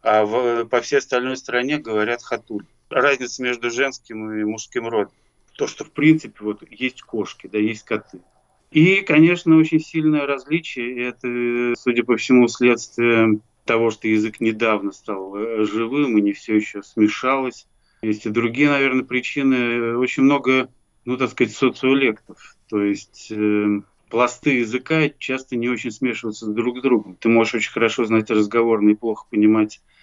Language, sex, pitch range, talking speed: Russian, male, 105-125 Hz, 150 wpm